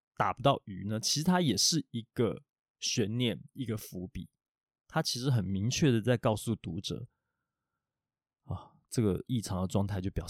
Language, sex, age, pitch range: Chinese, male, 20-39, 105-140 Hz